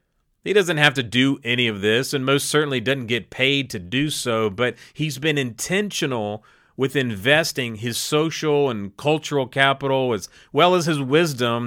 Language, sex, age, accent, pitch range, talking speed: English, male, 40-59, American, 105-140 Hz, 170 wpm